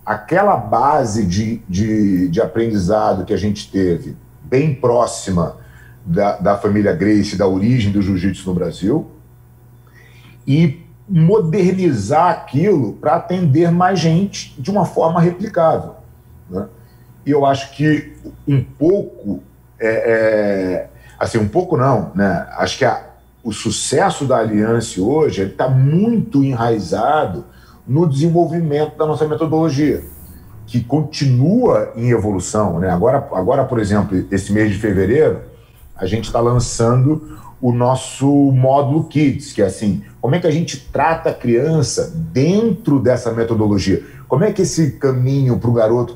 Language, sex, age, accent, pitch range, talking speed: Portuguese, male, 40-59, Brazilian, 110-150 Hz, 130 wpm